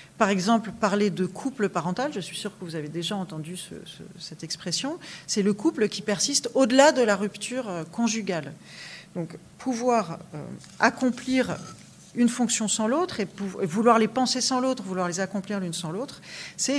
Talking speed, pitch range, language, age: 180 wpm, 195-250 Hz, French, 40-59